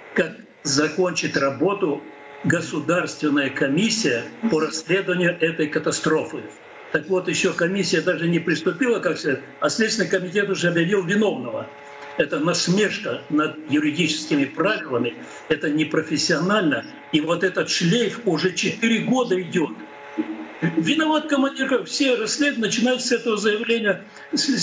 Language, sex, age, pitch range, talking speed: Russian, male, 60-79, 155-220 Hz, 110 wpm